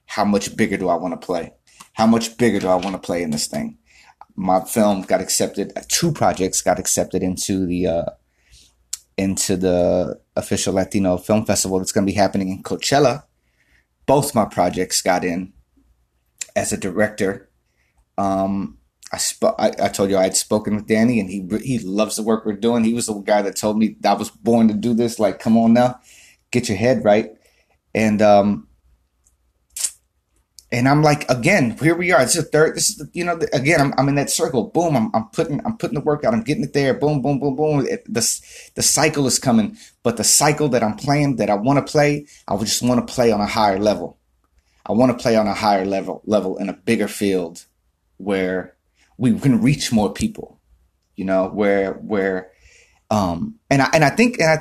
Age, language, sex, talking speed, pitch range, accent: 30-49, English, male, 210 wpm, 95-135 Hz, American